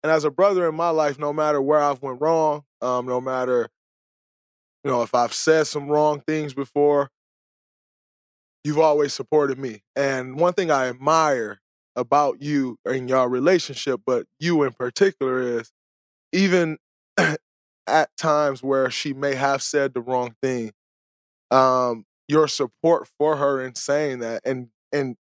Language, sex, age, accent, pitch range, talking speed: English, male, 20-39, American, 125-150 Hz, 155 wpm